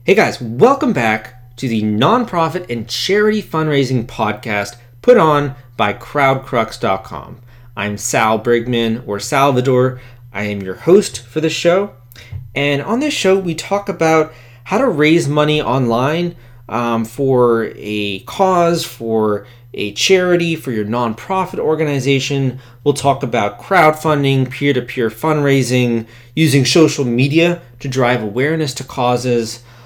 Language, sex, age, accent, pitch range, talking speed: English, male, 30-49, American, 115-150 Hz, 130 wpm